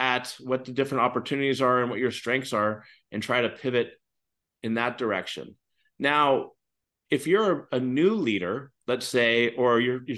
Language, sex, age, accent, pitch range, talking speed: English, male, 30-49, American, 115-135 Hz, 165 wpm